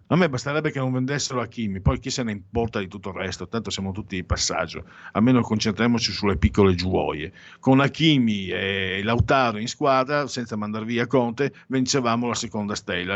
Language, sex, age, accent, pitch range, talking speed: Italian, male, 50-69, native, 100-130 Hz, 180 wpm